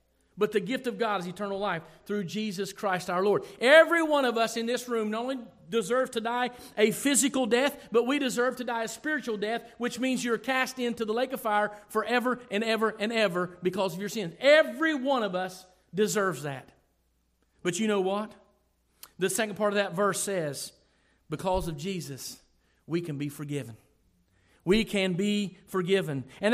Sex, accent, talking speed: male, American, 190 wpm